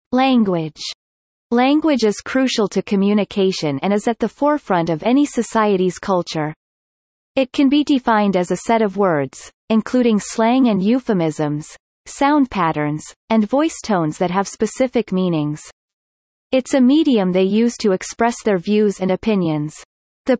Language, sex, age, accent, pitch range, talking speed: English, female, 30-49, American, 185-250 Hz, 145 wpm